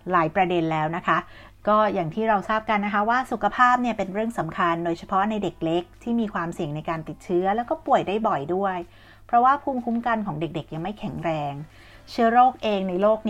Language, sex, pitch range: Thai, female, 175-235 Hz